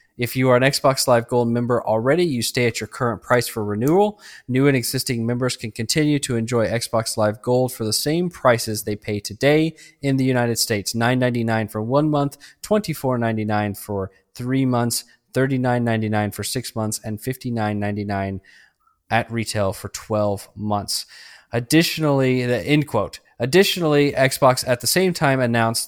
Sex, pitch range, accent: male, 110-130 Hz, American